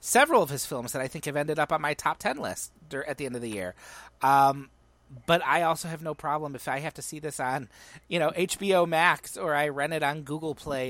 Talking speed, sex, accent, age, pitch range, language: 265 wpm, male, American, 30-49, 130-180 Hz, English